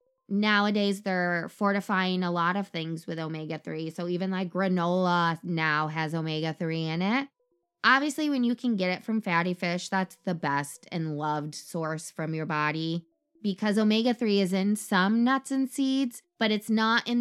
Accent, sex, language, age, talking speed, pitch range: American, female, English, 20-39, 165 wpm, 175-230 Hz